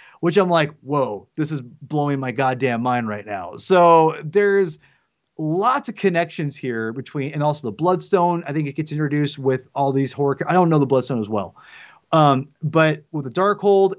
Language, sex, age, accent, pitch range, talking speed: English, male, 30-49, American, 140-185 Hz, 190 wpm